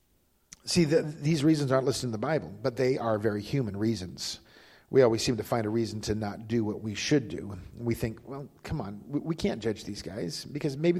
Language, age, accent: English, 50-69, American